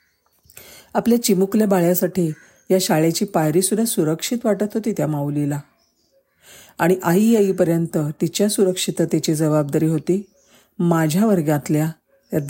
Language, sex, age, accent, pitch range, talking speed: Marathi, female, 40-59, native, 155-195 Hz, 100 wpm